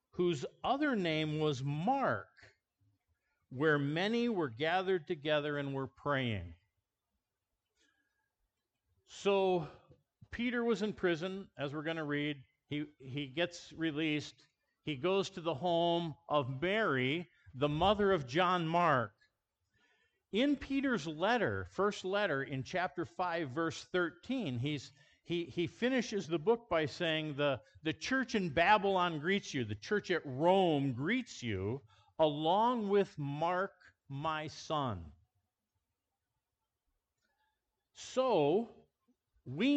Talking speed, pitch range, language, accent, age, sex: 115 wpm, 140-195 Hz, English, American, 50-69, male